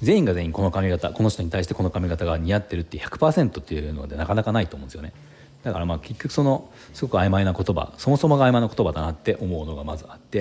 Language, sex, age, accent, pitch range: Japanese, male, 40-59, native, 80-120 Hz